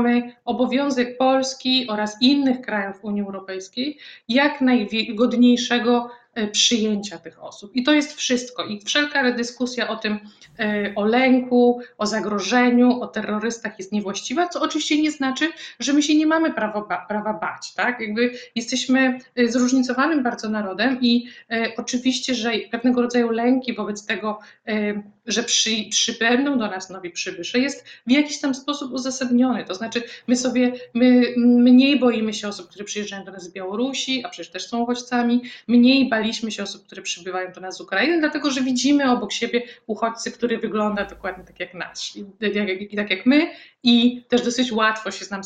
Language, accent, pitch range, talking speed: Polish, native, 210-255 Hz, 165 wpm